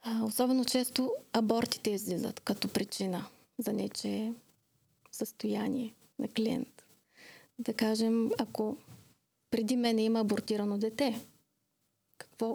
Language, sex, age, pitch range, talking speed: Bulgarian, female, 30-49, 220-255 Hz, 95 wpm